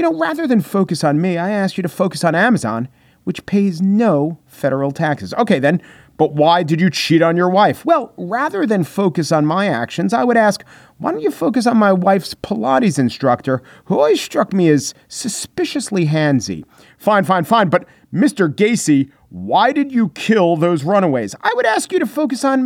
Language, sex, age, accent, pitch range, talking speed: English, male, 40-59, American, 135-205 Hz, 195 wpm